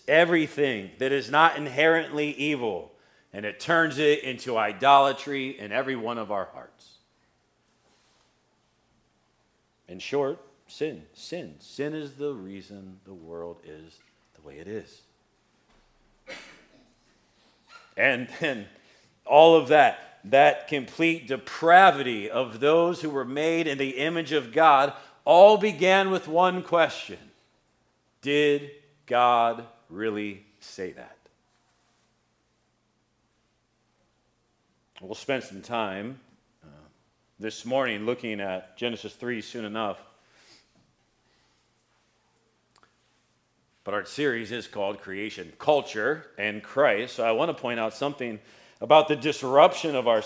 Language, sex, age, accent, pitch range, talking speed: English, male, 40-59, American, 110-150 Hz, 115 wpm